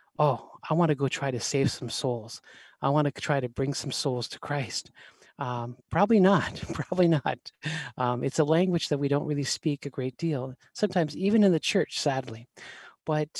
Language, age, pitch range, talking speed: English, 40-59, 130-150 Hz, 195 wpm